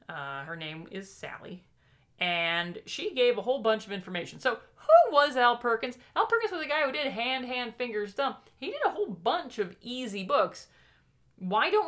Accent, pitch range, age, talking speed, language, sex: American, 175-275 Hz, 30-49, 195 wpm, English, female